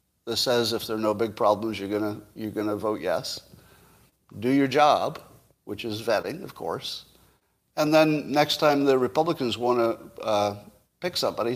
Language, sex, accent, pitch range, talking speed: English, male, American, 110-145 Hz, 175 wpm